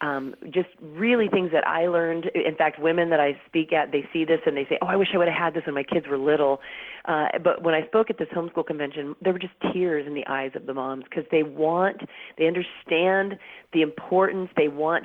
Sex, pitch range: female, 145-175 Hz